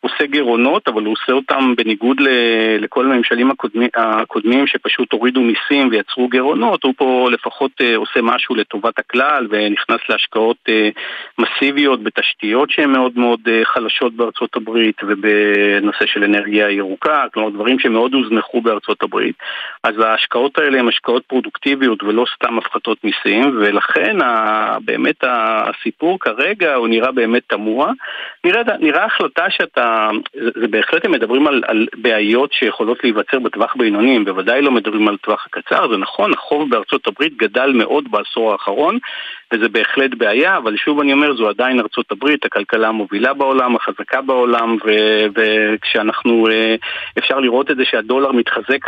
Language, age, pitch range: Hebrew, 50-69, 110-130 Hz